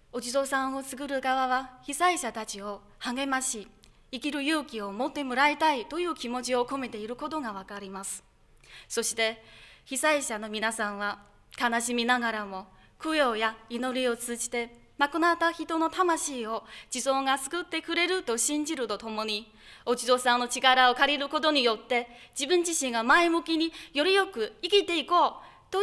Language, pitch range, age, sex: Japanese, 230-290 Hz, 20-39, female